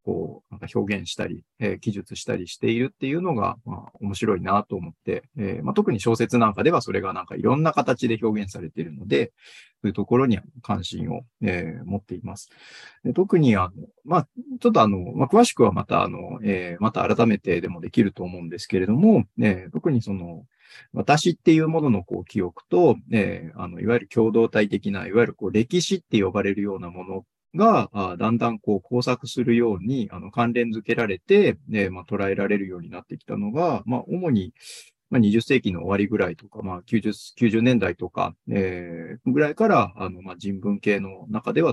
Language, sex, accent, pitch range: Japanese, male, native, 100-125 Hz